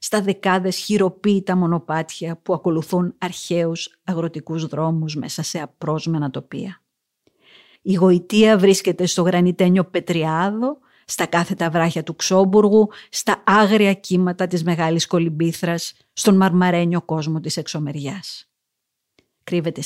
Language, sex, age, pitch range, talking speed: Greek, female, 50-69, 165-190 Hz, 110 wpm